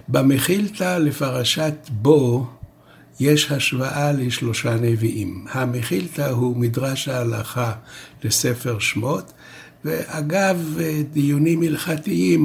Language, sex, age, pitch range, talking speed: Hebrew, male, 60-79, 115-150 Hz, 75 wpm